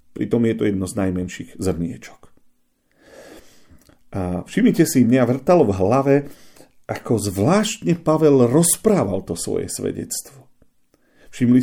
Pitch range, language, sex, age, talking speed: 100-150 Hz, Slovak, male, 40-59, 115 wpm